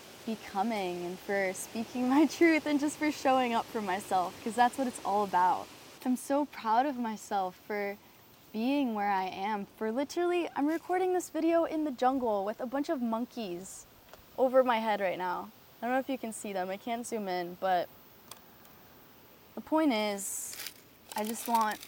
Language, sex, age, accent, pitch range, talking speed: English, female, 20-39, American, 190-245 Hz, 185 wpm